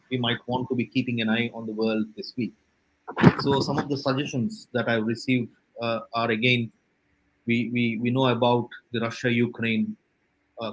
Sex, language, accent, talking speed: male, English, Indian, 190 wpm